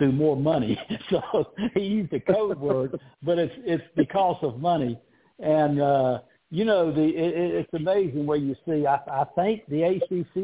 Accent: American